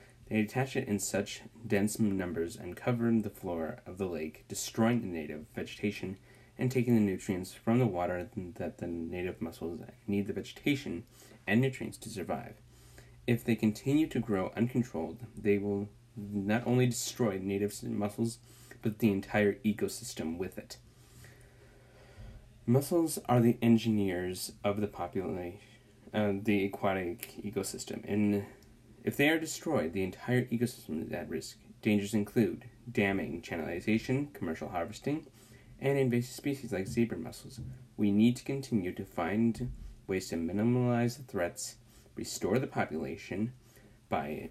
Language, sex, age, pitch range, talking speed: English, male, 20-39, 100-120 Hz, 140 wpm